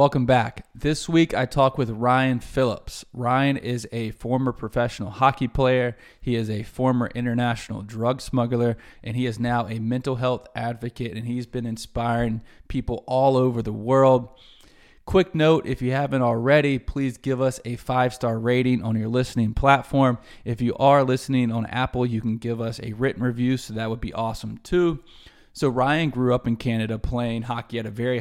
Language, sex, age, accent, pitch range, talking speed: English, male, 20-39, American, 115-130 Hz, 185 wpm